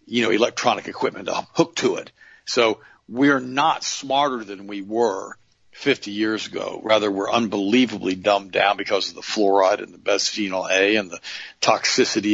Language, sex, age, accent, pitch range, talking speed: English, male, 50-69, American, 100-130 Hz, 165 wpm